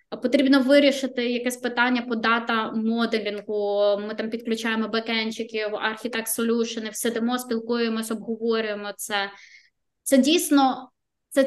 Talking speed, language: 100 wpm, Ukrainian